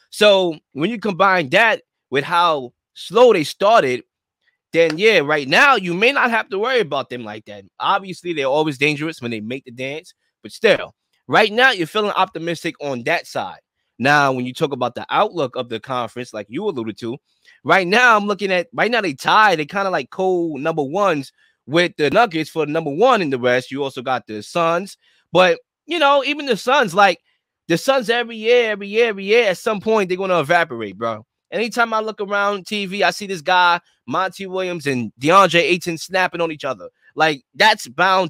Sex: male